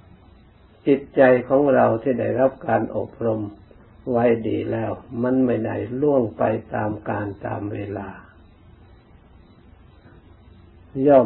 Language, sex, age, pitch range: Thai, male, 60-79, 100-125 Hz